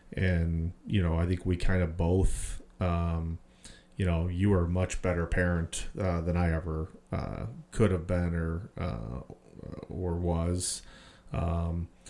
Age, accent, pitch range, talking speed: 30-49, American, 85-95 Hz, 155 wpm